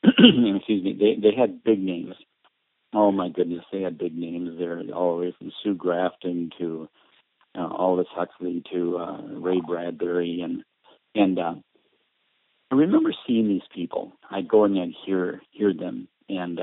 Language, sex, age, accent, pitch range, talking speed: English, male, 50-69, American, 85-95 Hz, 160 wpm